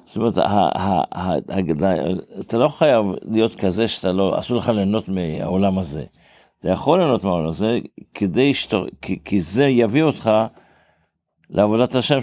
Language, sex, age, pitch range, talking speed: Hebrew, male, 60-79, 90-110 Hz, 130 wpm